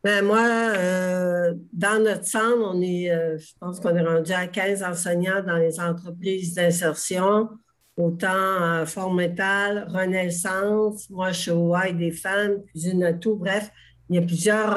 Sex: female